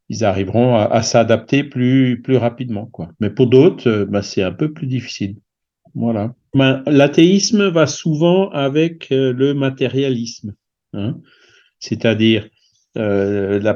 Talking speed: 130 wpm